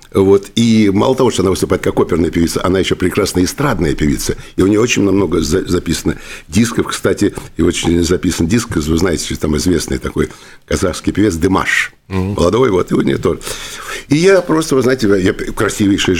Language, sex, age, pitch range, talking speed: Russian, male, 60-79, 80-105 Hz, 180 wpm